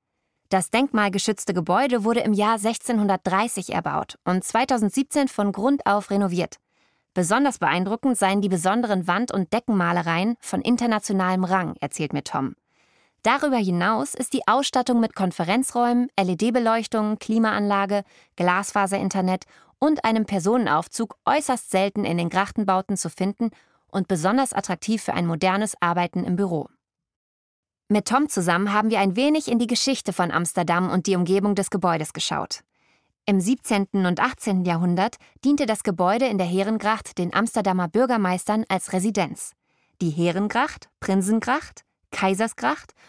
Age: 20-39